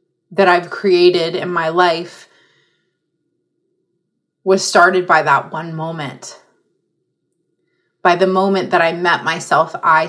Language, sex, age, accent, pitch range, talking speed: English, female, 30-49, American, 170-200 Hz, 120 wpm